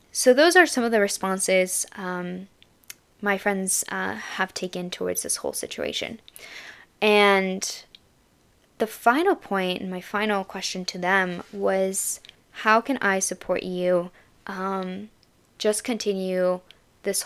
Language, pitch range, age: English, 180-205 Hz, 10-29